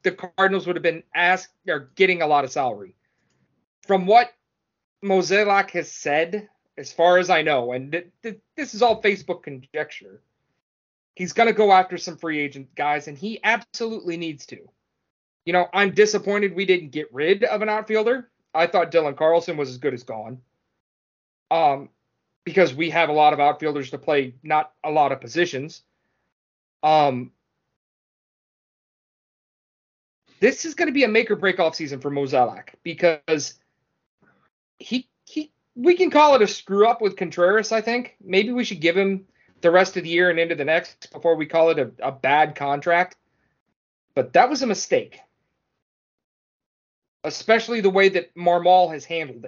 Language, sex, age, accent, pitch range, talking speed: English, male, 30-49, American, 150-205 Hz, 170 wpm